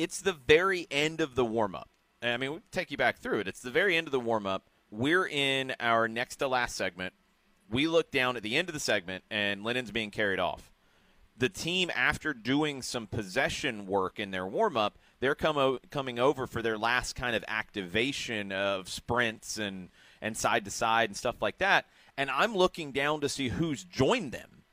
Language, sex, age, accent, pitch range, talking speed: English, male, 30-49, American, 110-155 Hz, 190 wpm